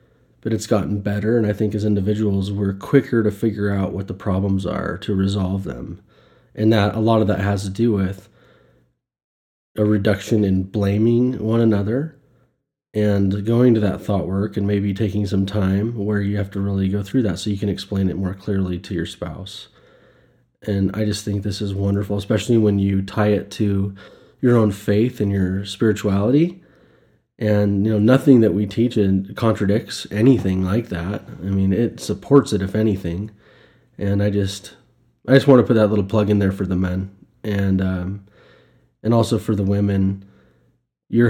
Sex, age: male, 20-39